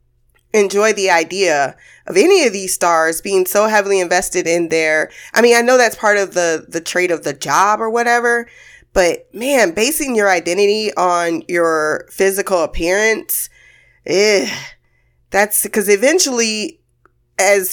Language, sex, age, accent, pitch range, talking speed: English, female, 20-39, American, 165-225 Hz, 145 wpm